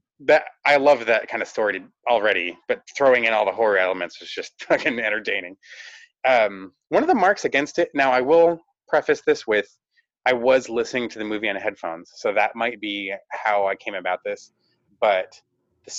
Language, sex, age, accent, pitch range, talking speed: English, male, 30-49, American, 105-170 Hz, 190 wpm